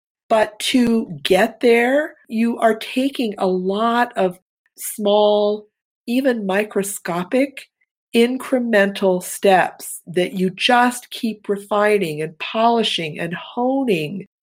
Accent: American